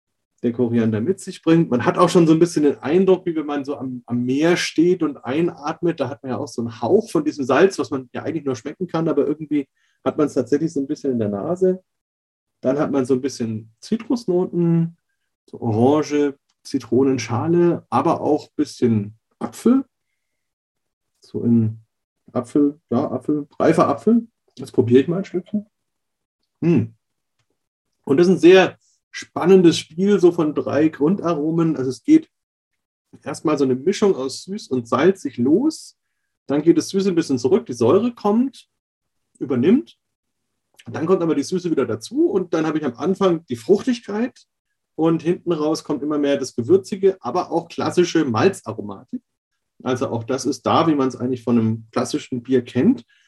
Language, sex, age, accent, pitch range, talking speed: German, male, 30-49, German, 130-185 Hz, 175 wpm